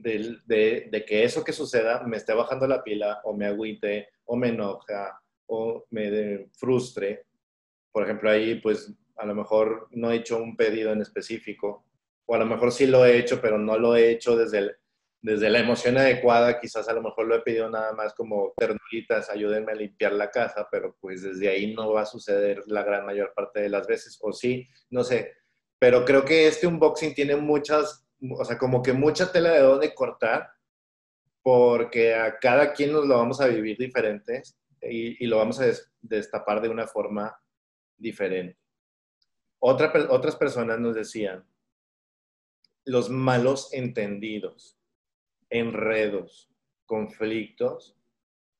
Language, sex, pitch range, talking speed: Spanish, male, 110-135 Hz, 170 wpm